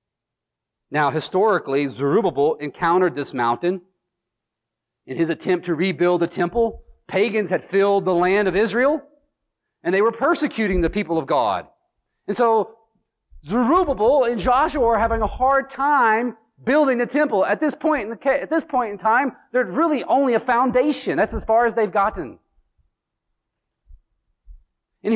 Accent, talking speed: American, 150 wpm